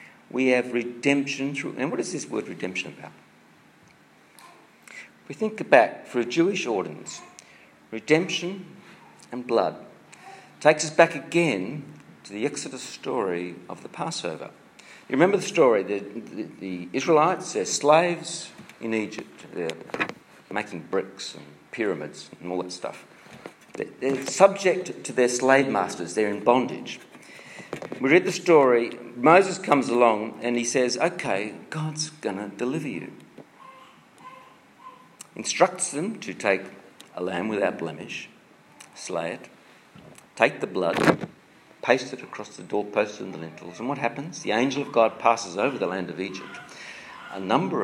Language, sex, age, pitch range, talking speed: English, male, 50-69, 115-165 Hz, 145 wpm